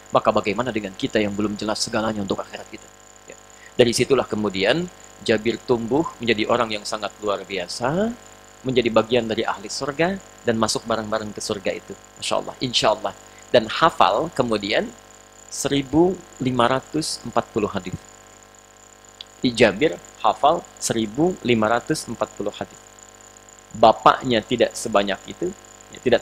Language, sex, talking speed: Indonesian, male, 120 wpm